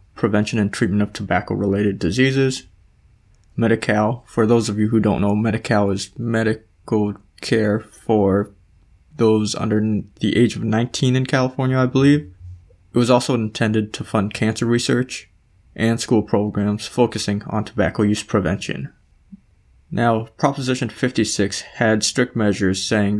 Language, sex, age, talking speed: English, male, 20-39, 135 wpm